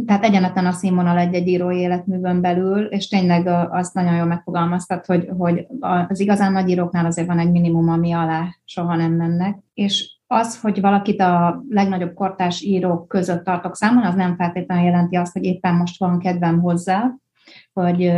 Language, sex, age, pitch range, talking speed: Hungarian, female, 30-49, 175-200 Hz, 170 wpm